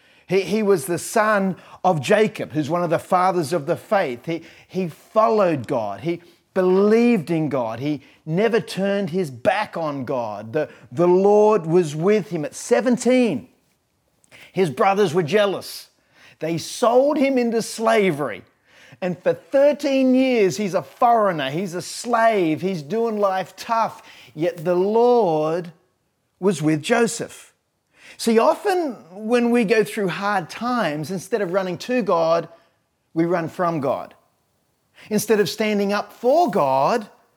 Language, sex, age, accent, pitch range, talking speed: English, male, 40-59, Australian, 165-225 Hz, 145 wpm